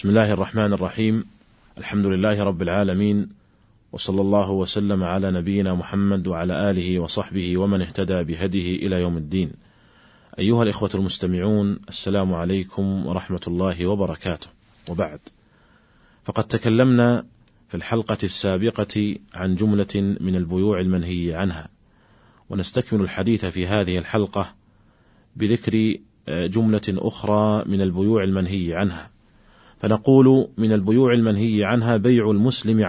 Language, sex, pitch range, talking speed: Arabic, male, 95-110 Hz, 115 wpm